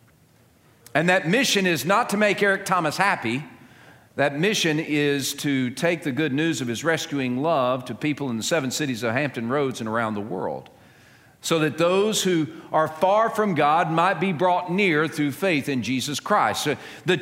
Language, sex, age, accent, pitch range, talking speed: English, male, 50-69, American, 130-185 Hz, 190 wpm